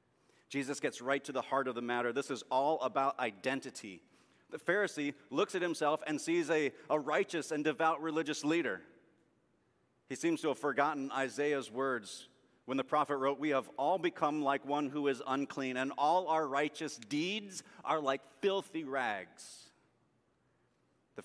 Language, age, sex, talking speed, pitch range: English, 40-59, male, 165 wpm, 115-145 Hz